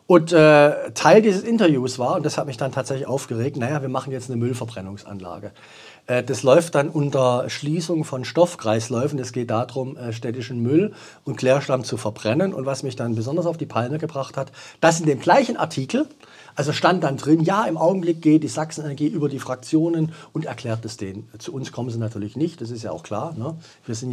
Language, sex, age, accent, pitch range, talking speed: German, male, 40-59, German, 120-160 Hz, 205 wpm